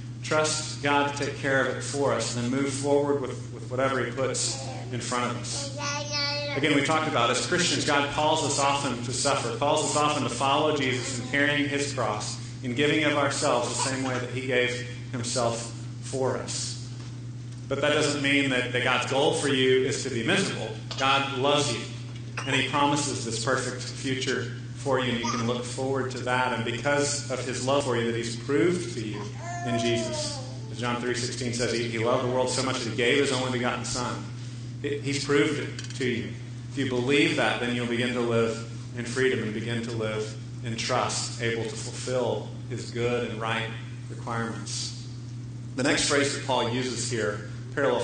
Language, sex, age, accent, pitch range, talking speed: English, male, 40-59, American, 120-135 Hz, 195 wpm